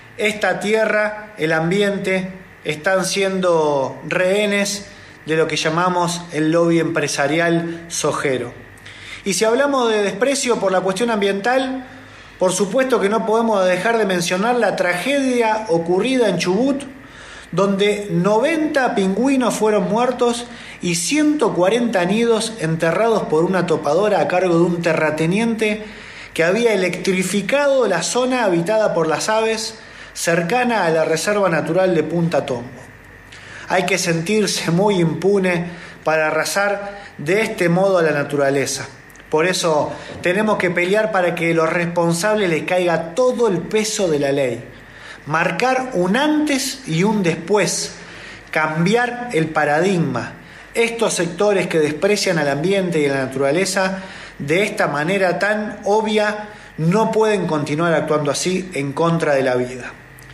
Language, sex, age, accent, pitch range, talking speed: Spanish, male, 20-39, Argentinian, 160-215 Hz, 135 wpm